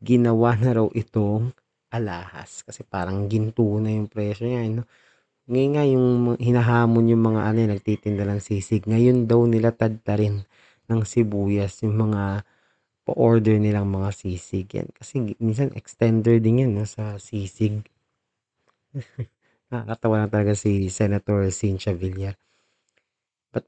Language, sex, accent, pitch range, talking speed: Filipino, male, native, 105-120 Hz, 135 wpm